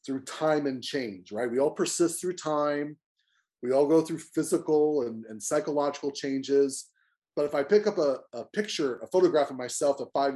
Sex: male